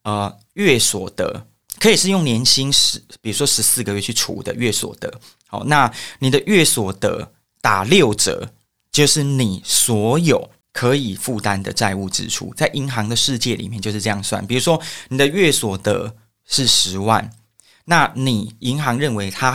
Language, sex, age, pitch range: Chinese, male, 20-39, 105-135 Hz